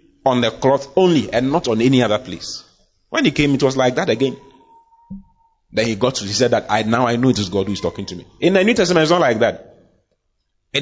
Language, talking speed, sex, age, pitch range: English, 255 wpm, male, 30-49, 110-165 Hz